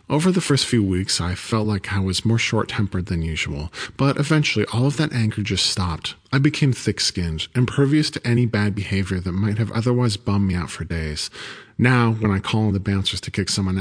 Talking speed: 210 wpm